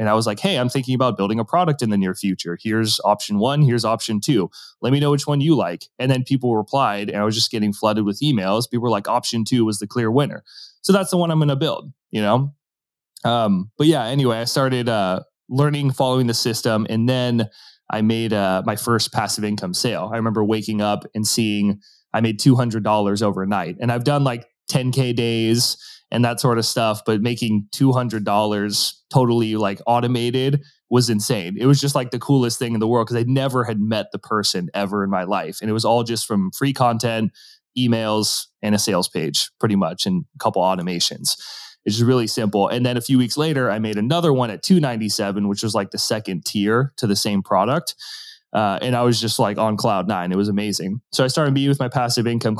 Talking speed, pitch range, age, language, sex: 225 wpm, 105-130 Hz, 20-39, English, male